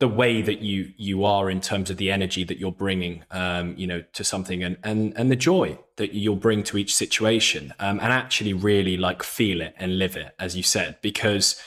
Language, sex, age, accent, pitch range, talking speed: English, male, 20-39, British, 95-120 Hz, 225 wpm